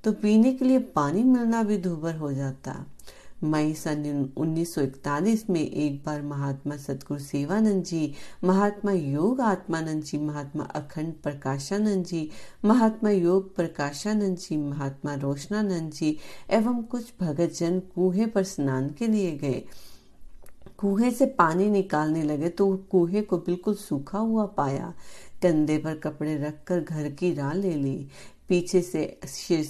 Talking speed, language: 135 wpm, Hindi